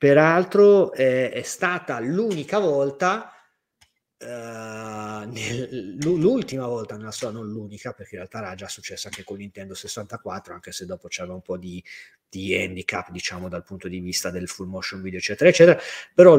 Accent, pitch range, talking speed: native, 110-140 Hz, 150 wpm